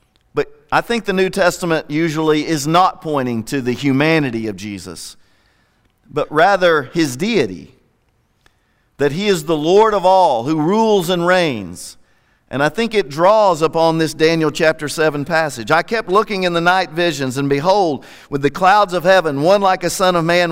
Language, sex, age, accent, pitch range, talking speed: English, male, 50-69, American, 140-185 Hz, 175 wpm